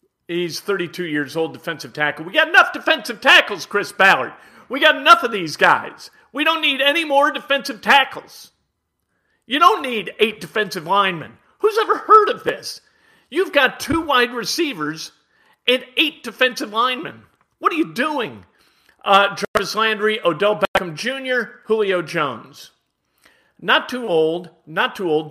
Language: English